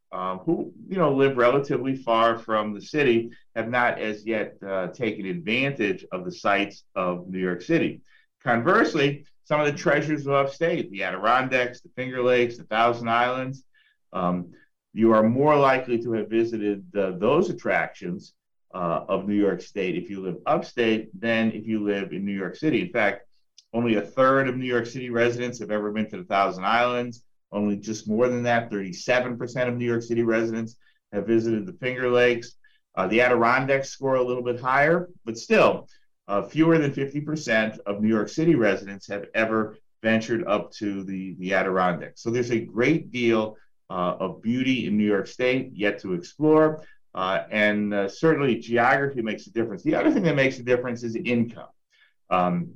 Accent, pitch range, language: American, 105-130 Hz, English